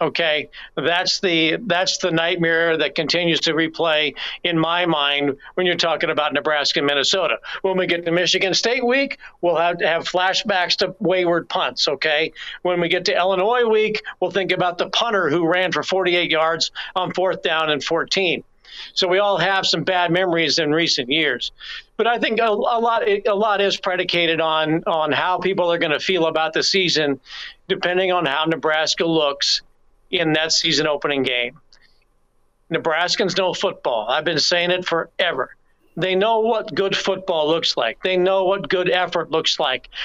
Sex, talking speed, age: male, 180 wpm, 50-69